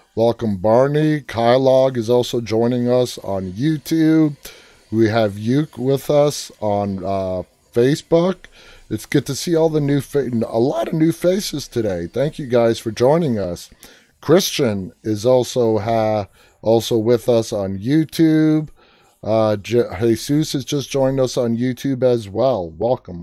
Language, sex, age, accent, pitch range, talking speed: English, male, 30-49, American, 110-140 Hz, 150 wpm